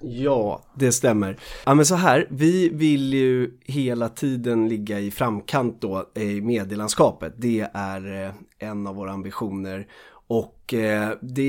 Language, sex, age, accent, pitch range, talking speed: Swedish, male, 30-49, native, 105-130 Hz, 135 wpm